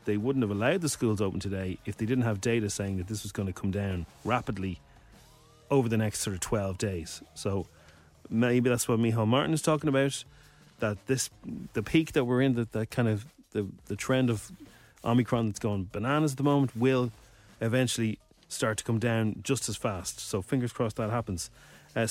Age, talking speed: 30-49, 205 wpm